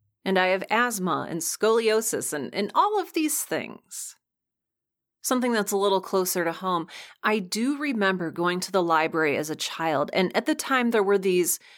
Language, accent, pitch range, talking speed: English, American, 170-215 Hz, 185 wpm